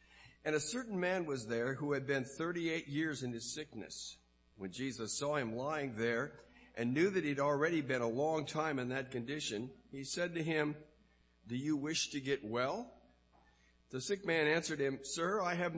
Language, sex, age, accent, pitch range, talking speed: English, male, 50-69, American, 110-155 Hz, 190 wpm